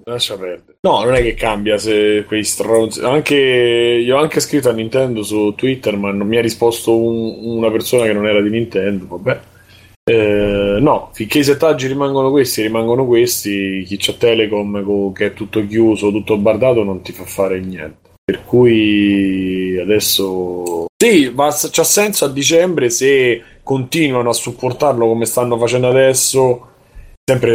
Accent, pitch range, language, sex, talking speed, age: native, 100-120 Hz, Italian, male, 165 wpm, 30-49